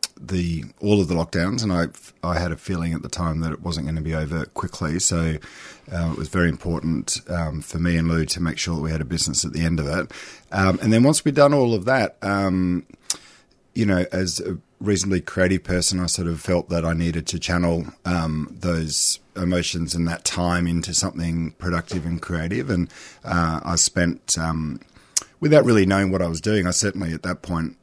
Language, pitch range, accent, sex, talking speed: English, 85-95 Hz, Australian, male, 215 wpm